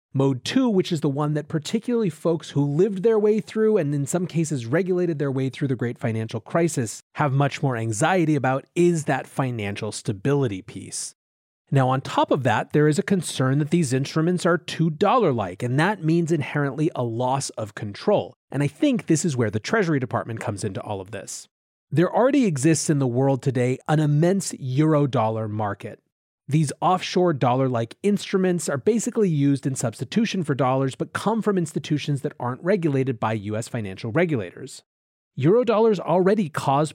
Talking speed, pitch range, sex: 175 wpm, 125-175 Hz, male